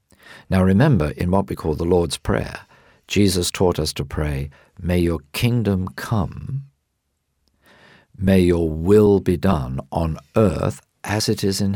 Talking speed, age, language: 150 wpm, 60-79, English